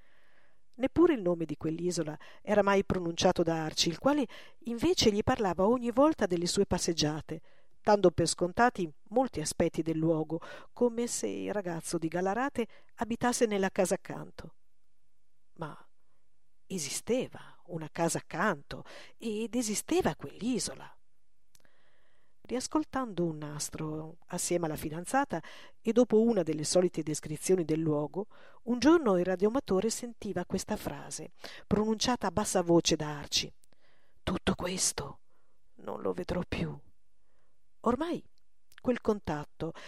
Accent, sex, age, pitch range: native, female, 50-69, 165-235 Hz